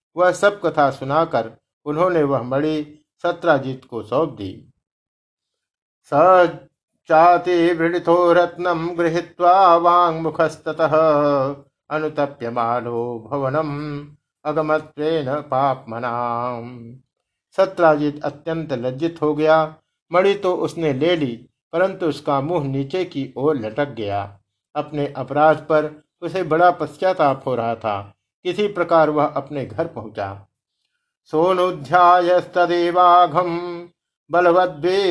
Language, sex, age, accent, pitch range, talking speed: Hindi, male, 50-69, native, 135-170 Hz, 80 wpm